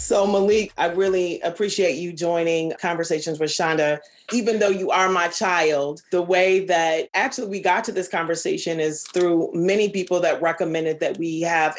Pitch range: 165-190 Hz